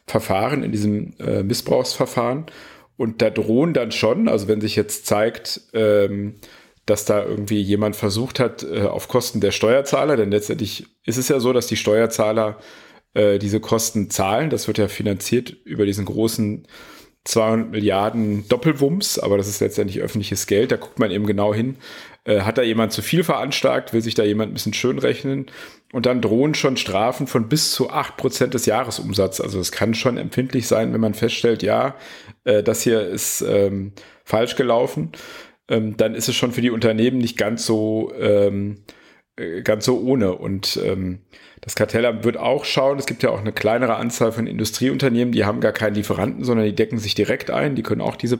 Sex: male